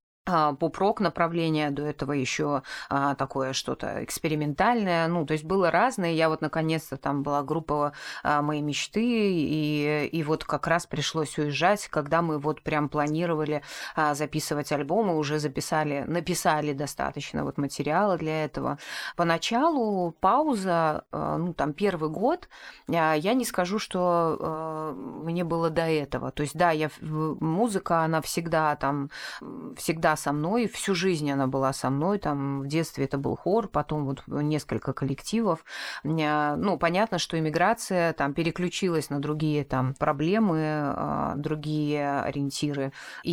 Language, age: Russian, 20-39